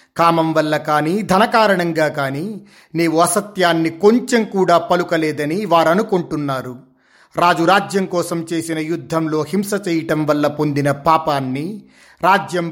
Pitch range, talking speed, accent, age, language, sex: 155-190 Hz, 110 wpm, native, 30-49, Telugu, male